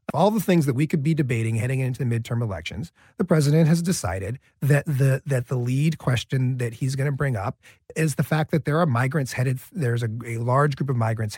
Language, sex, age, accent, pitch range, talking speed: English, male, 40-59, American, 110-150 Hz, 230 wpm